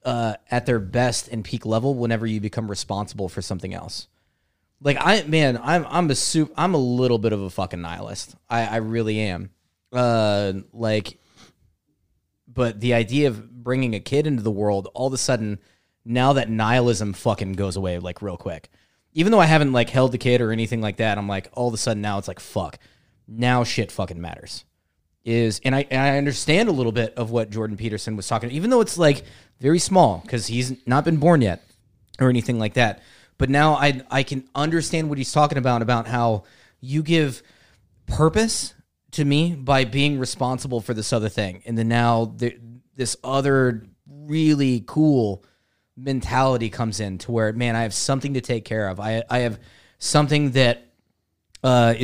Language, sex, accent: English, male, American